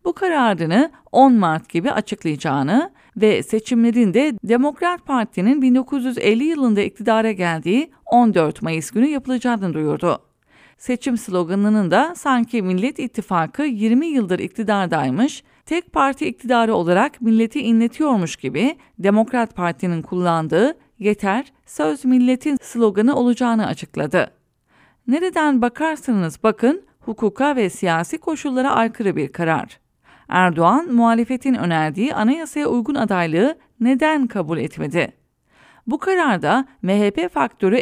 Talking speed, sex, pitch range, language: 110 wpm, female, 190-265 Hz, English